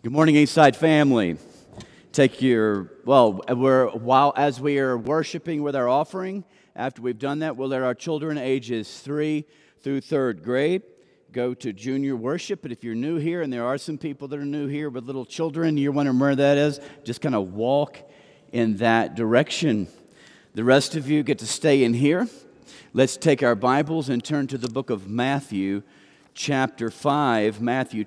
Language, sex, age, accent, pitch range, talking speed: English, male, 50-69, American, 120-150 Hz, 180 wpm